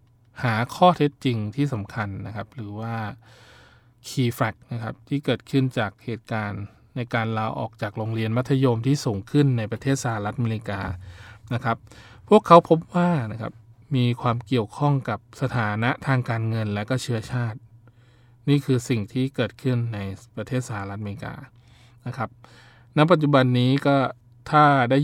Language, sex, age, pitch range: Thai, male, 20-39, 110-130 Hz